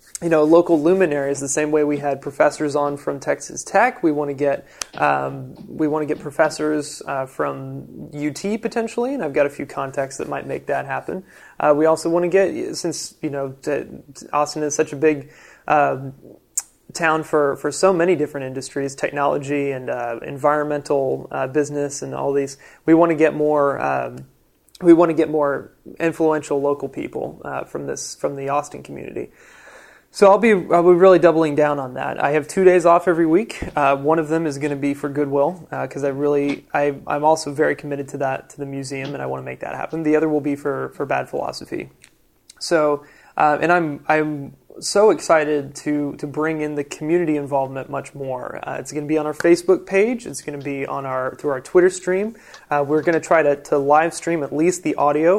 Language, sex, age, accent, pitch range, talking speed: English, male, 20-39, American, 140-160 Hz, 210 wpm